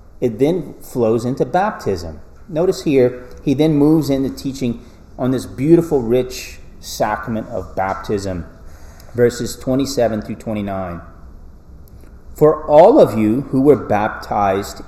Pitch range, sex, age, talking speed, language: 85-130 Hz, male, 30-49, 120 wpm, English